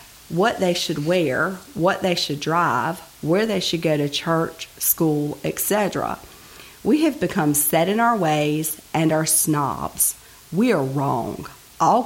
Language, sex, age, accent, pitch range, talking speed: English, female, 40-59, American, 155-190 Hz, 150 wpm